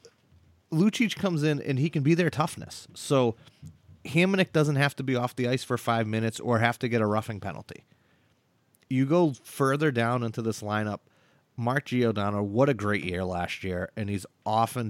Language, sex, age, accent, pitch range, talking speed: English, male, 30-49, American, 110-135 Hz, 185 wpm